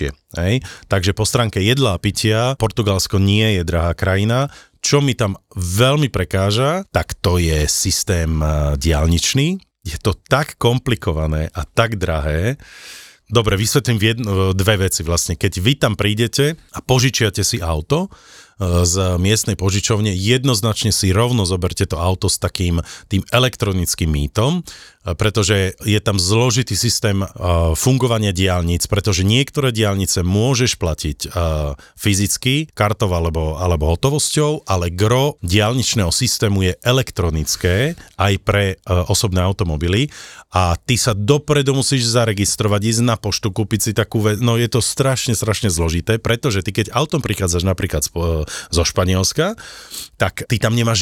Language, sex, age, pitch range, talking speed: Slovak, male, 40-59, 90-120 Hz, 135 wpm